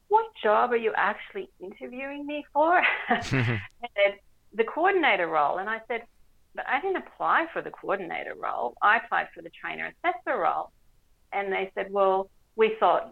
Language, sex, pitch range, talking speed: English, female, 170-245 Hz, 160 wpm